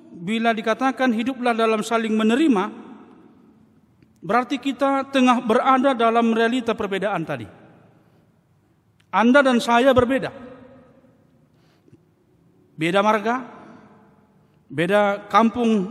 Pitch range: 170-250 Hz